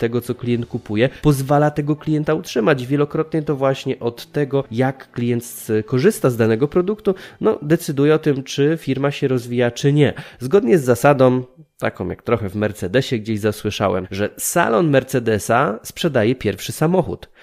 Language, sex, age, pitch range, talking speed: Polish, male, 20-39, 110-145 Hz, 150 wpm